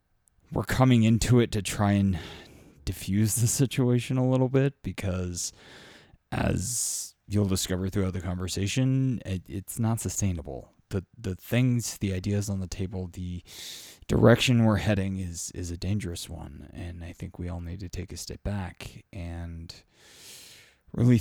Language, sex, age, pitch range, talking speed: English, male, 20-39, 90-105 Hz, 155 wpm